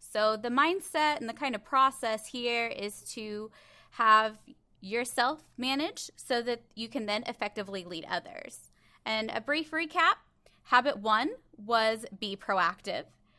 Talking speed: 140 wpm